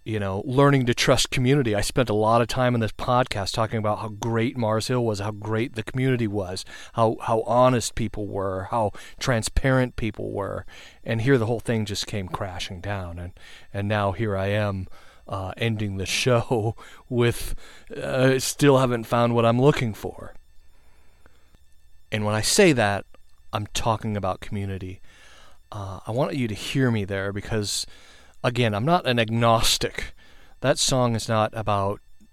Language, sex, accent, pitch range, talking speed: English, male, American, 100-125 Hz, 175 wpm